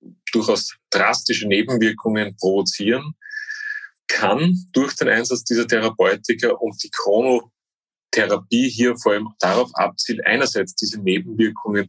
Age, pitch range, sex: 30-49, 105-155 Hz, male